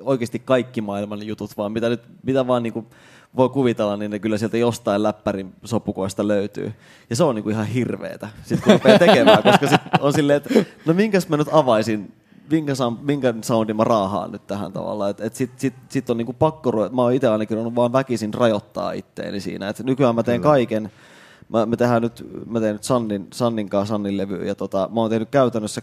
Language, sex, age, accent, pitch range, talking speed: Finnish, male, 20-39, native, 105-125 Hz, 195 wpm